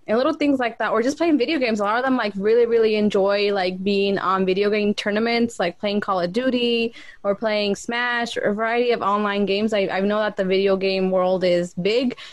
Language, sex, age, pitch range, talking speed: English, female, 20-39, 195-230 Hz, 230 wpm